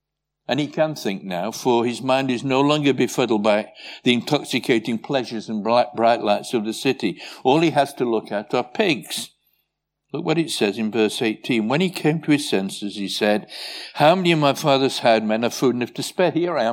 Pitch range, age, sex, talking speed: 120-160 Hz, 60-79, male, 220 wpm